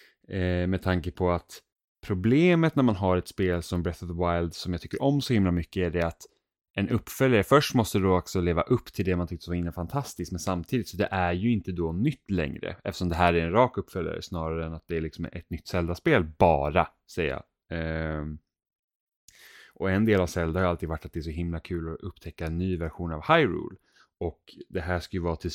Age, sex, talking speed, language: 20-39, male, 235 wpm, Swedish